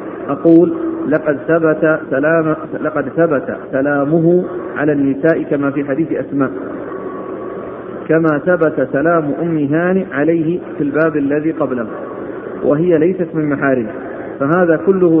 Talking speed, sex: 105 wpm, male